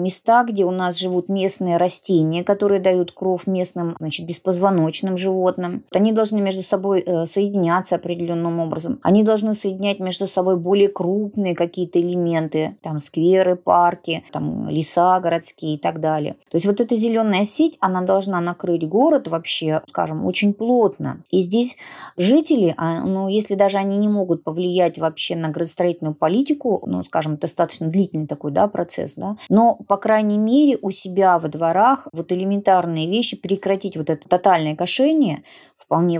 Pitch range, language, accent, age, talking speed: 170-200 Hz, Russian, native, 30-49, 155 wpm